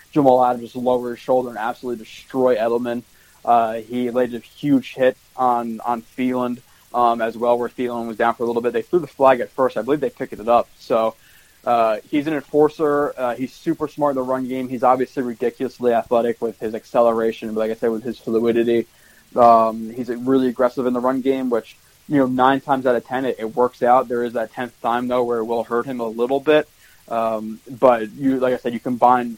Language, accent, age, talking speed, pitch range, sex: English, American, 20-39, 225 wpm, 115-130 Hz, male